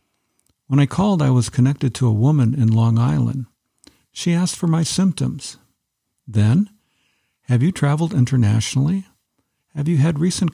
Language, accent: English, American